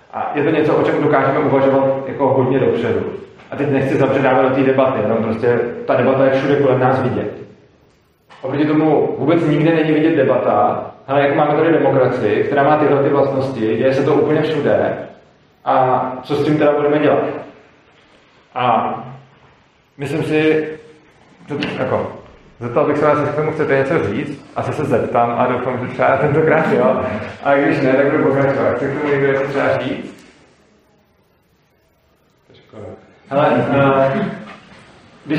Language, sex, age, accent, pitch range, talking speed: Czech, male, 30-49, native, 135-150 Hz, 155 wpm